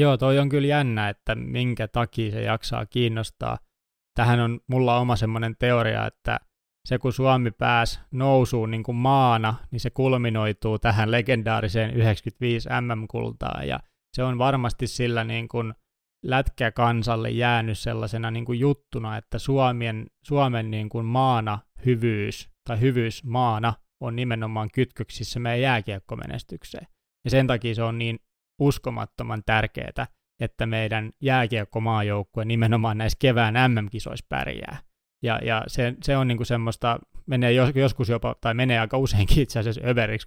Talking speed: 140 wpm